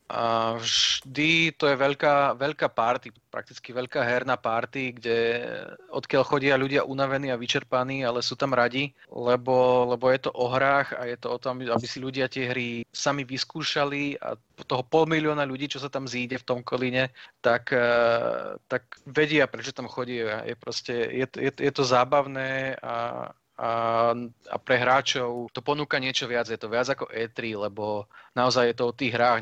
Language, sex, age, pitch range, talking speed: Slovak, male, 30-49, 120-135 Hz, 175 wpm